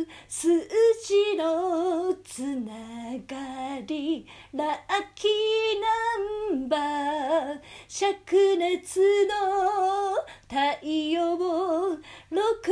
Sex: female